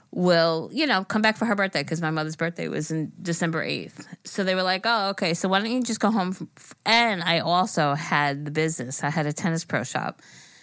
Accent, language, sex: American, English, female